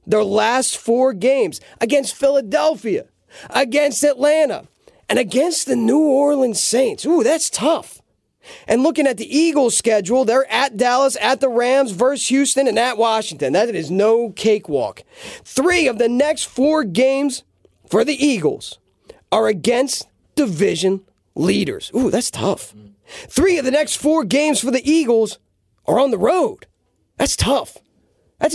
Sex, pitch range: male, 215-280 Hz